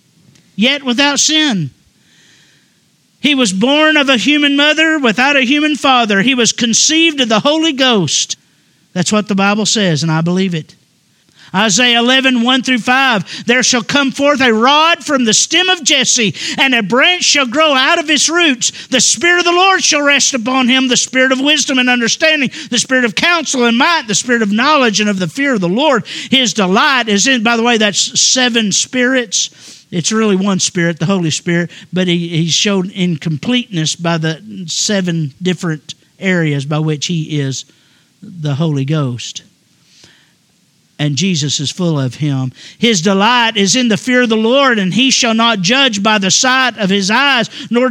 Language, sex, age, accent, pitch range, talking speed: English, male, 50-69, American, 200-275 Hz, 185 wpm